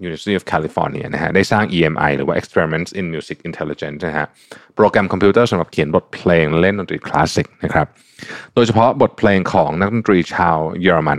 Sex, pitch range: male, 85-115 Hz